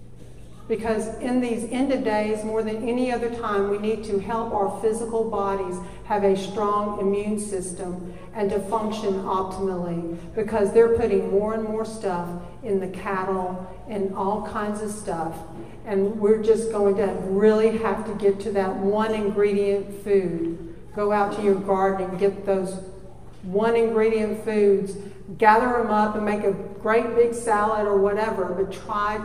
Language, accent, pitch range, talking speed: English, American, 195-220 Hz, 165 wpm